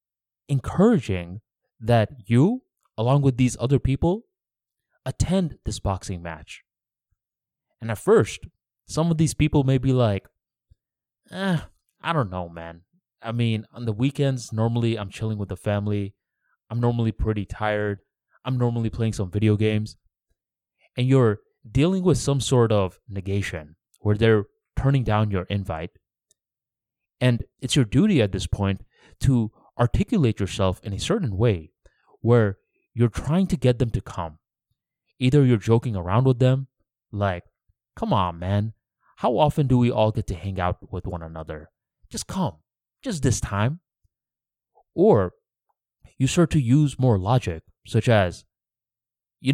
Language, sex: English, male